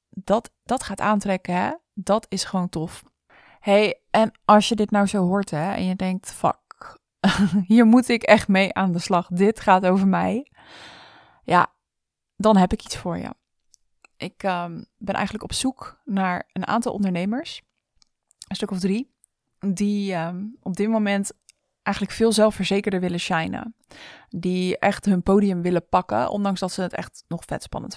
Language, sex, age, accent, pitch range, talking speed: Dutch, female, 20-39, Dutch, 190-235 Hz, 160 wpm